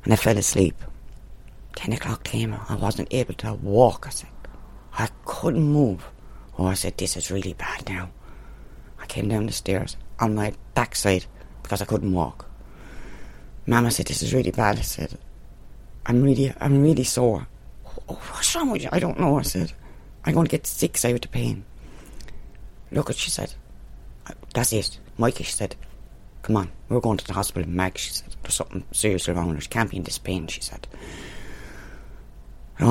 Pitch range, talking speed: 100-135 Hz, 180 wpm